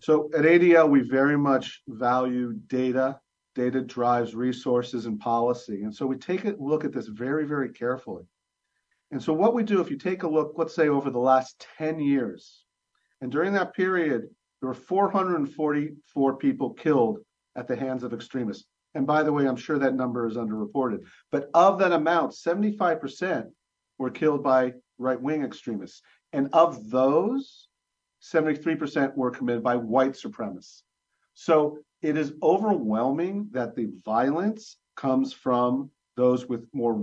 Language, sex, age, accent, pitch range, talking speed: English, male, 50-69, American, 125-155 Hz, 155 wpm